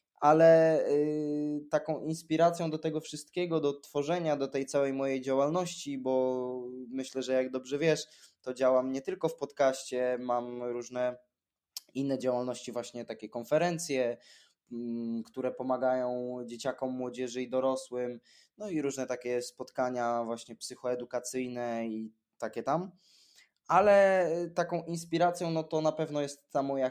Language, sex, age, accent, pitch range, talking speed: Polish, male, 20-39, native, 130-150 Hz, 130 wpm